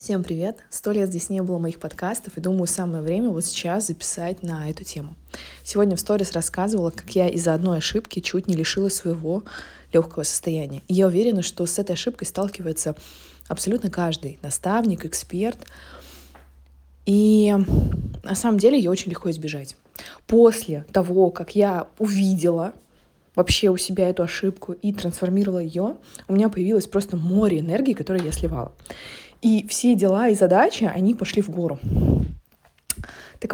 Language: Russian